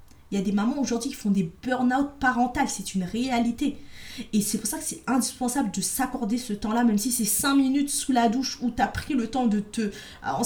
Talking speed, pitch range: 240 wpm, 210-260 Hz